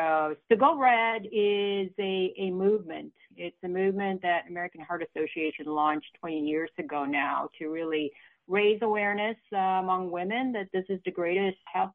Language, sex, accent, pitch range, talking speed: English, female, American, 160-205 Hz, 160 wpm